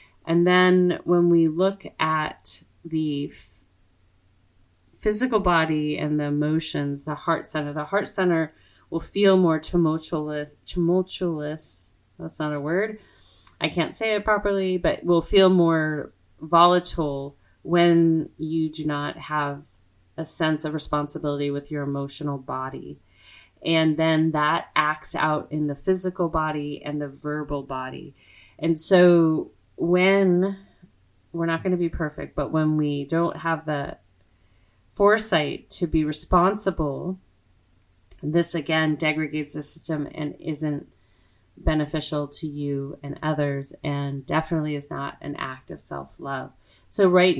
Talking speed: 135 wpm